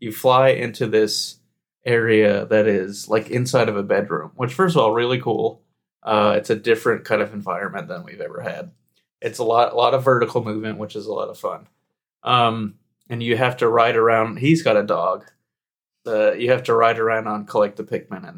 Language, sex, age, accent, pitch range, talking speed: English, male, 30-49, American, 110-160 Hz, 210 wpm